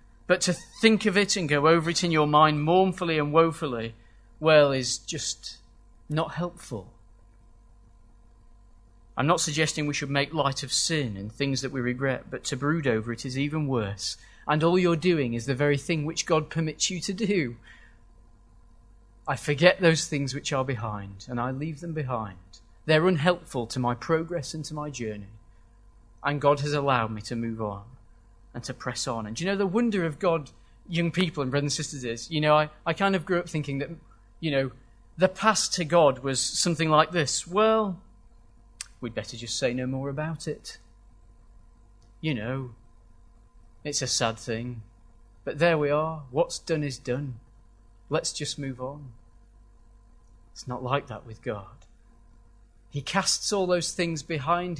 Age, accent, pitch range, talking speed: 30-49, British, 115-160 Hz, 175 wpm